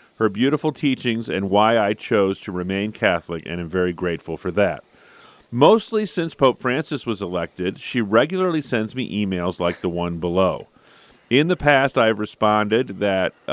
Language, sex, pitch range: English, male, 95-120 Hz